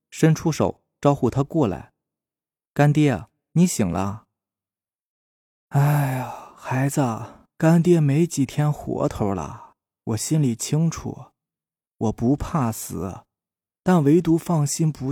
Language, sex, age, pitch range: Chinese, male, 20-39, 110-145 Hz